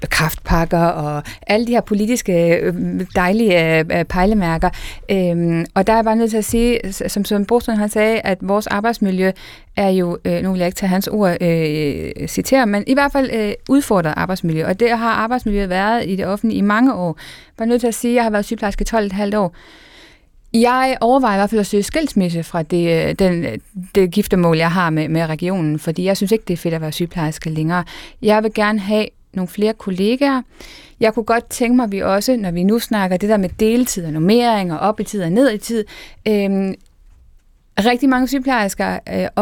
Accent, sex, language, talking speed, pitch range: native, female, Danish, 205 wpm, 185-235 Hz